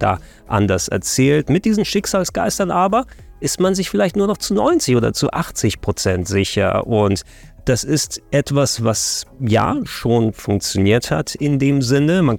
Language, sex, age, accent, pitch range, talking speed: German, male, 30-49, German, 105-140 Hz, 160 wpm